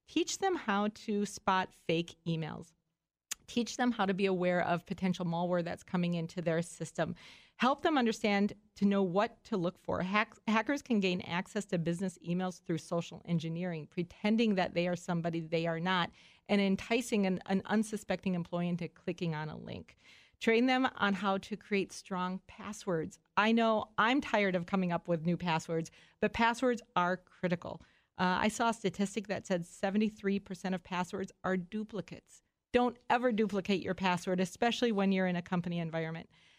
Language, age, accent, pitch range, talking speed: English, 40-59, American, 175-215 Hz, 170 wpm